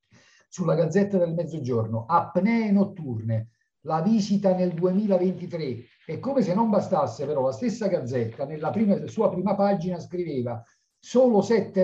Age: 50-69